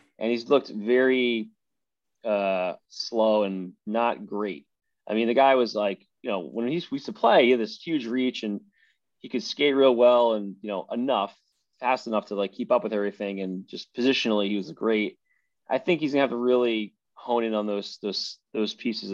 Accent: American